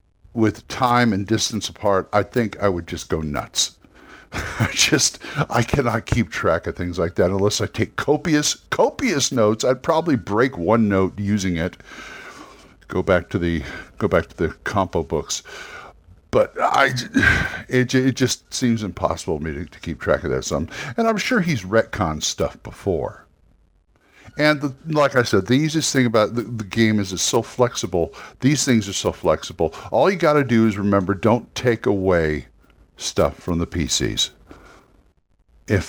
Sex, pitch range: male, 90-120 Hz